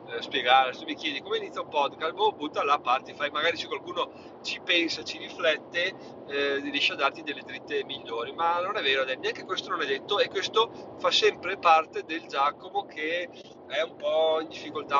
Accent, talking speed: native, 195 wpm